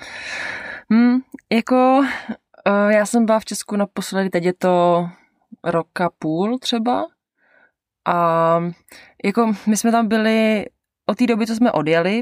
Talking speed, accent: 135 wpm, native